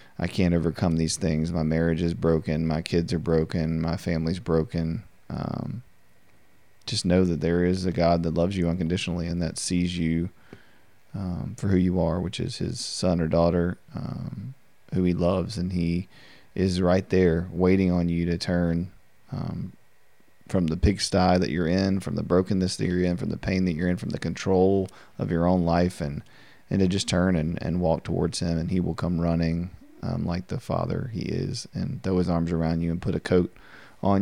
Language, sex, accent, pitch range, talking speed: English, male, American, 85-95 Hz, 200 wpm